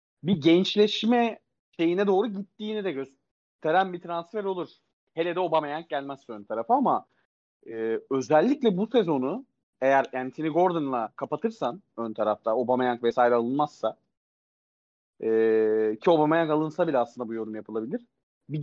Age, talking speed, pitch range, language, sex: 40-59, 130 wpm, 135-195 Hz, Turkish, male